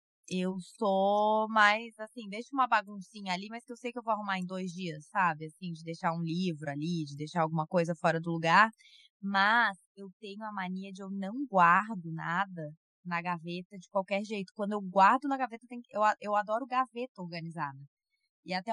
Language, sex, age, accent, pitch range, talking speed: Portuguese, female, 20-39, Brazilian, 170-220 Hz, 190 wpm